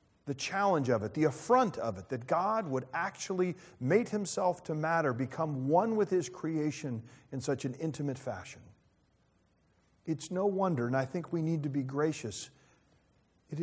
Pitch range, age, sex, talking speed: 120-170 Hz, 40-59, male, 165 wpm